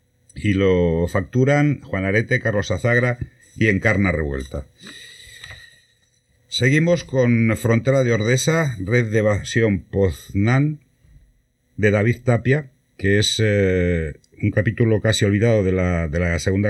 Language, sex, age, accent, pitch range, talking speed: Spanish, male, 60-79, Spanish, 95-120 Hz, 120 wpm